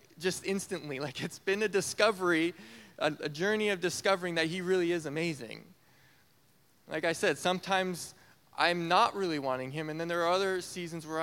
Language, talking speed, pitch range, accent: English, 175 wpm, 160-205 Hz, American